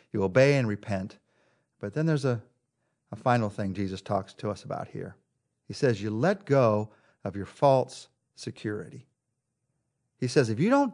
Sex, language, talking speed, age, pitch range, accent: male, English, 170 wpm, 50-69, 130-200 Hz, American